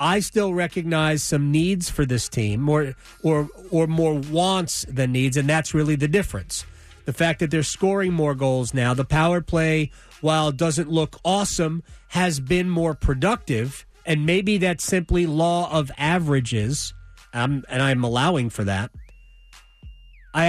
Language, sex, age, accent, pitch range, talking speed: English, male, 40-59, American, 135-175 Hz, 160 wpm